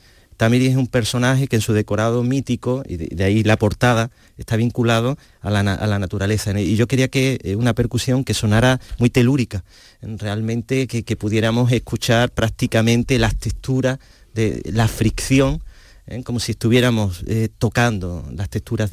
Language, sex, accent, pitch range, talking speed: Spanish, male, Argentinian, 105-125 Hz, 165 wpm